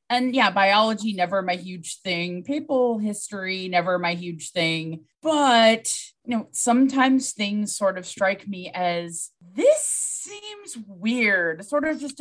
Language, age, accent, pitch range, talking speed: English, 20-39, American, 180-235 Hz, 145 wpm